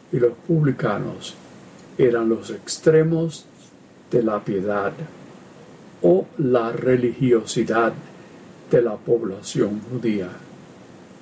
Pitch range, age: 120-165 Hz, 50-69